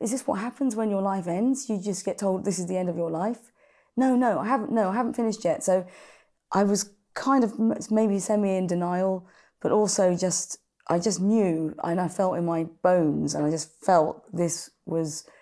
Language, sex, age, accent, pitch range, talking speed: English, female, 30-49, British, 160-200 Hz, 215 wpm